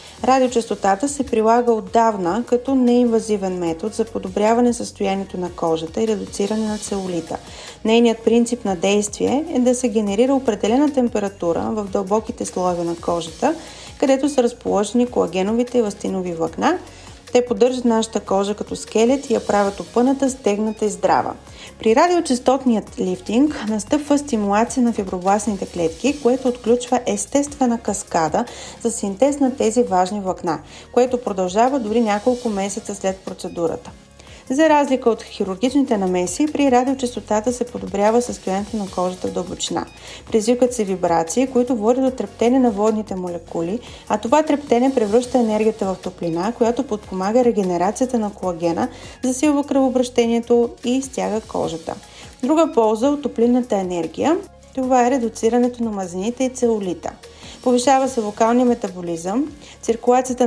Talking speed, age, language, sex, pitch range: 130 wpm, 30-49, Bulgarian, female, 200-250 Hz